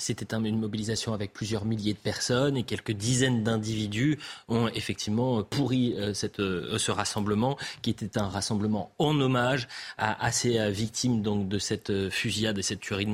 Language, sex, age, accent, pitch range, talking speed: French, male, 30-49, French, 105-135 Hz, 150 wpm